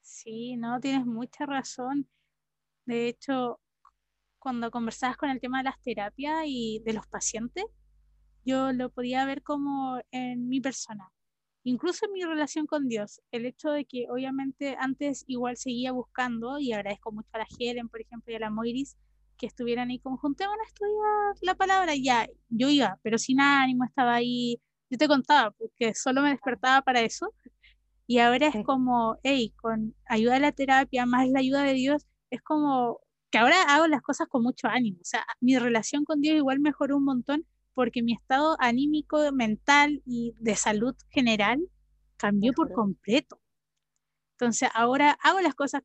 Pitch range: 235-285 Hz